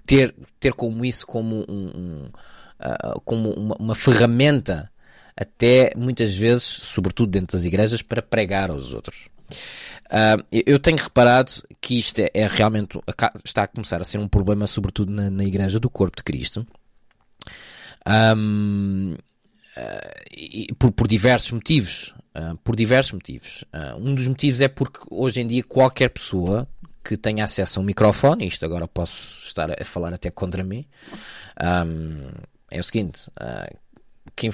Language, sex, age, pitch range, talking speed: Portuguese, male, 20-39, 95-120 Hz, 155 wpm